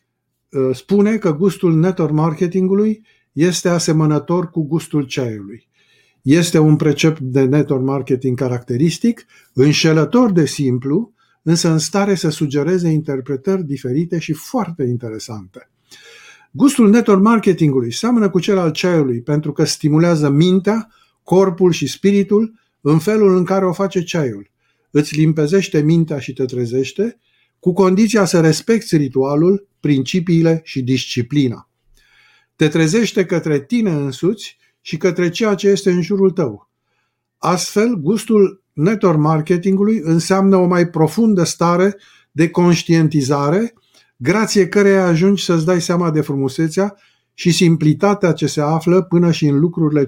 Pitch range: 150-195 Hz